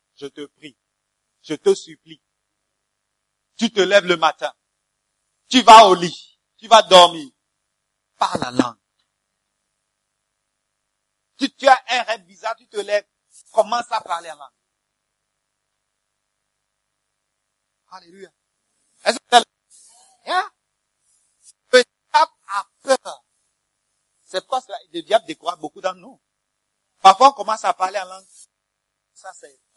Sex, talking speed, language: male, 120 wpm, English